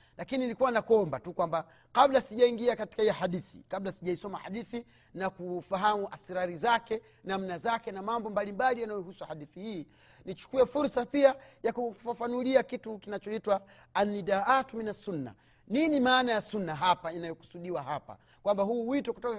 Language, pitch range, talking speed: Swahili, 180-235 Hz, 145 wpm